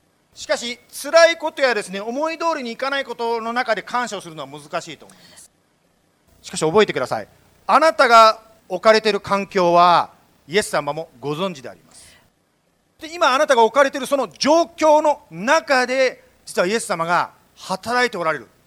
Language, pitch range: Japanese, 175-255 Hz